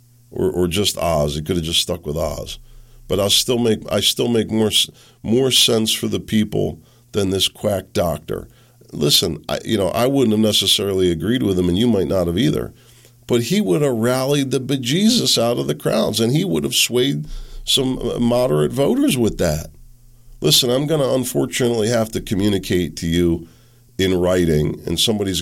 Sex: male